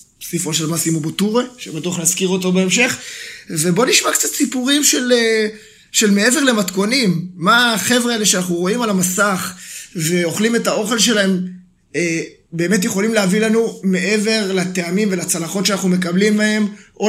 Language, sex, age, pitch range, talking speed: Hebrew, male, 20-39, 170-200 Hz, 135 wpm